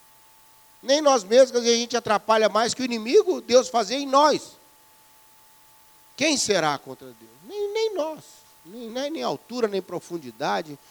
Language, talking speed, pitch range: Portuguese, 150 wpm, 160-240 Hz